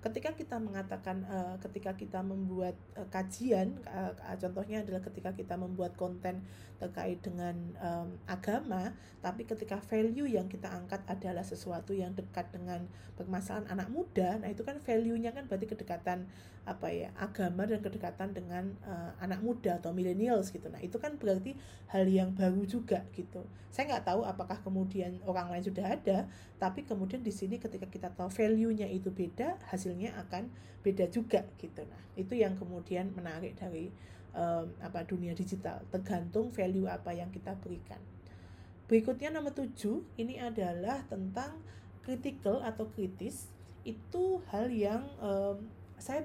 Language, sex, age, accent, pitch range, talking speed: Indonesian, female, 20-39, native, 175-220 Hz, 145 wpm